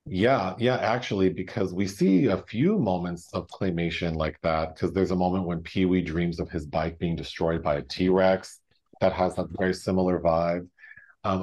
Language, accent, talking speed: English, American, 185 wpm